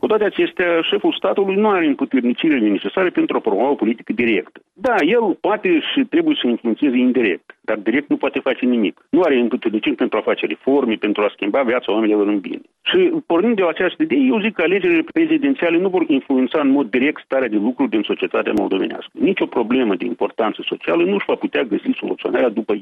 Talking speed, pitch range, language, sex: 205 wpm, 205-340 Hz, Romanian, male